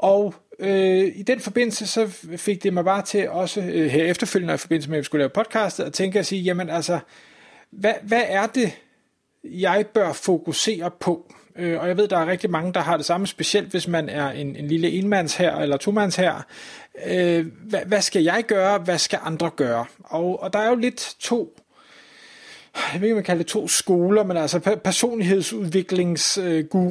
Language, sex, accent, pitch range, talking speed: Danish, male, native, 165-210 Hz, 200 wpm